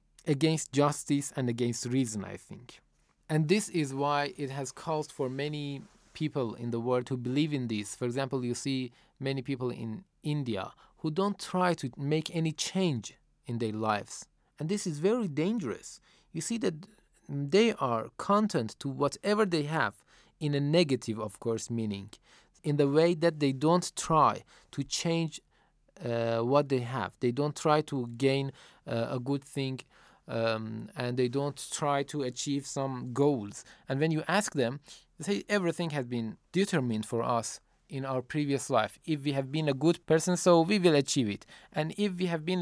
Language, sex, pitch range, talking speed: Persian, male, 125-170 Hz, 180 wpm